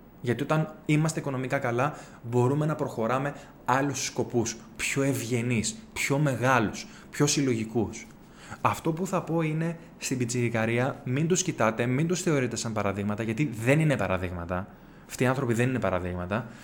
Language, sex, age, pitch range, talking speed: Greek, male, 20-39, 120-160 Hz, 150 wpm